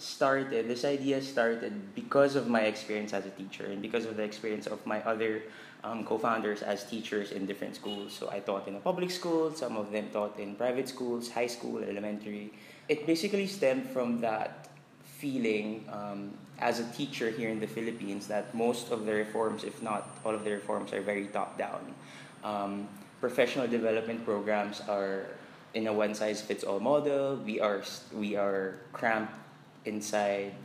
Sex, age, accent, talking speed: male, 20-39, Filipino, 180 wpm